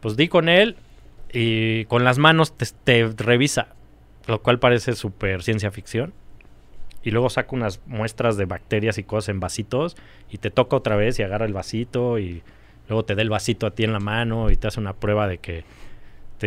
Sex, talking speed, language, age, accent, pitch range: male, 205 wpm, Spanish, 20-39, Mexican, 100-120 Hz